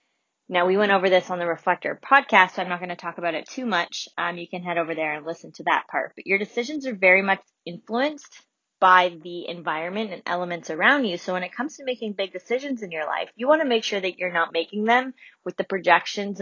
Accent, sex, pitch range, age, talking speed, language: American, female, 165-200 Hz, 20-39, 250 wpm, English